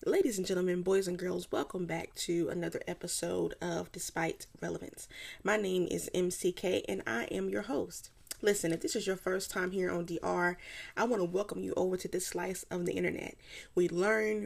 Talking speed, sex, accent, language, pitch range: 195 wpm, female, American, English, 180-220 Hz